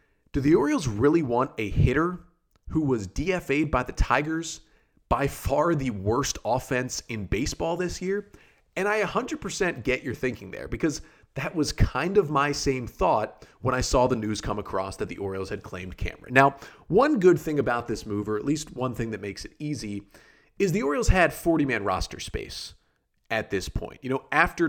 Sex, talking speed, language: male, 190 wpm, English